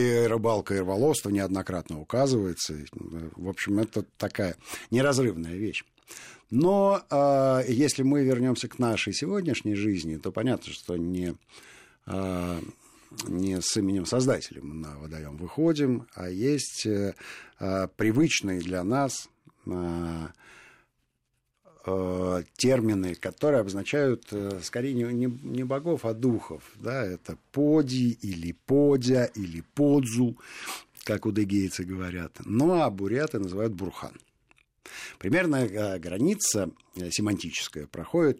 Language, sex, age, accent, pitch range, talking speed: Russian, male, 50-69, native, 90-130 Hz, 105 wpm